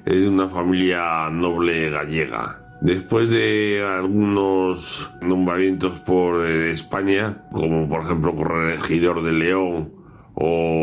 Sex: male